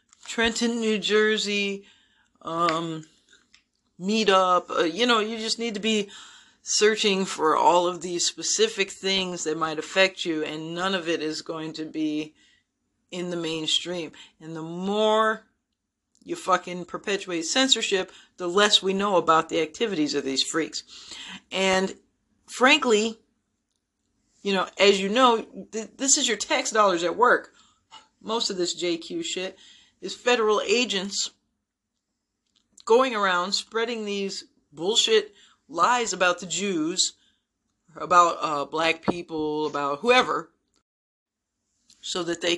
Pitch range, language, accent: 170-215 Hz, English, American